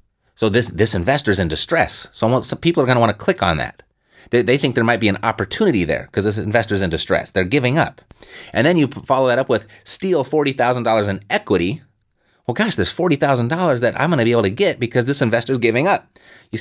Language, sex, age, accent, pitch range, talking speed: English, male, 30-49, American, 100-130 Hz, 230 wpm